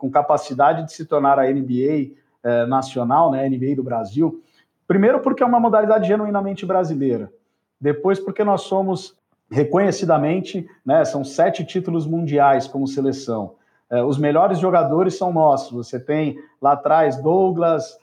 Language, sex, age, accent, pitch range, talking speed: Portuguese, male, 50-69, Brazilian, 145-180 Hz, 145 wpm